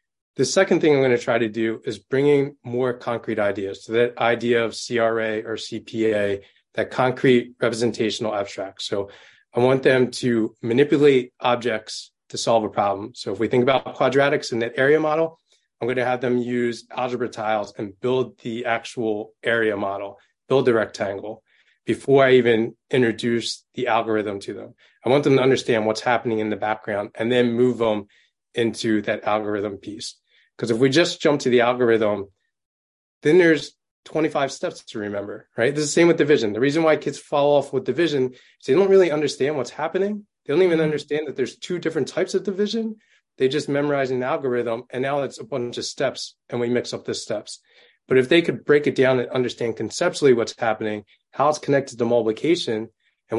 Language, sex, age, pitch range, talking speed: English, male, 20-39, 110-140 Hz, 195 wpm